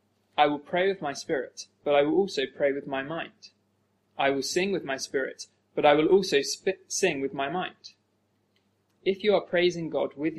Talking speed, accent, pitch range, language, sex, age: 195 wpm, British, 110-175 Hz, English, male, 20-39